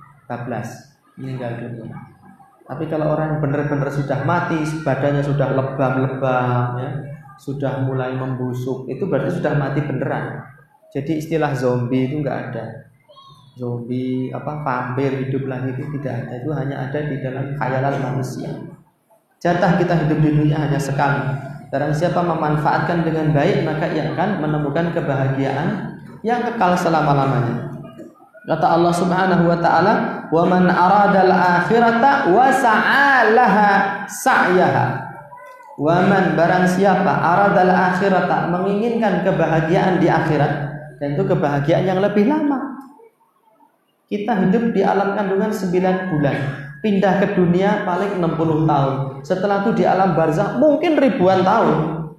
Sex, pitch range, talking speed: male, 140-185 Hz, 125 wpm